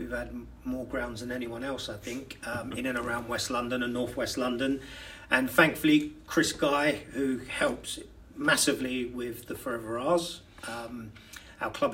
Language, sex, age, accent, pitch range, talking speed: English, male, 40-59, British, 115-135 Hz, 160 wpm